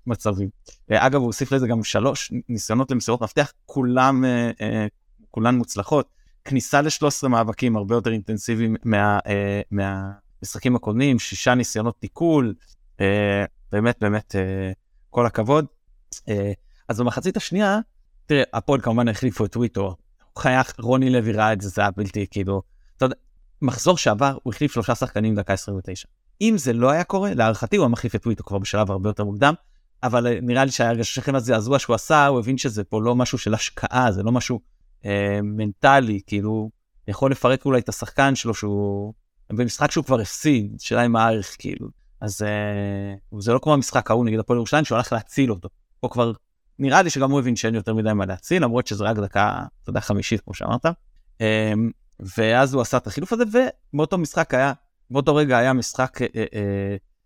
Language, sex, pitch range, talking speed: Hebrew, male, 105-130 Hz, 170 wpm